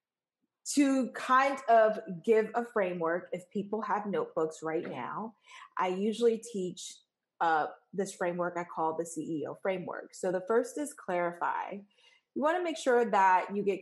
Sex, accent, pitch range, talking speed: female, American, 180-225 Hz, 150 wpm